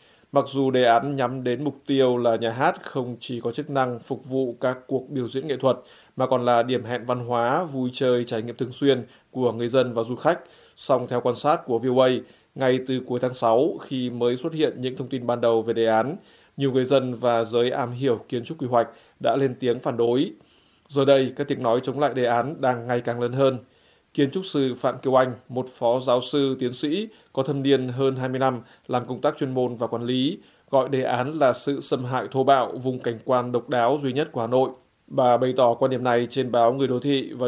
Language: Vietnamese